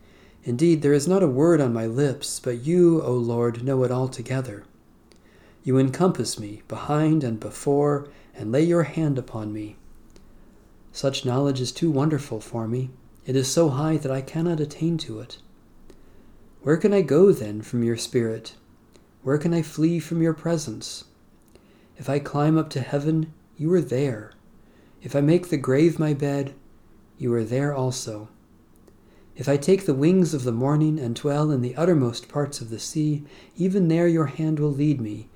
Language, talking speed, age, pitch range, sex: English, 175 wpm, 40-59, 120-150 Hz, male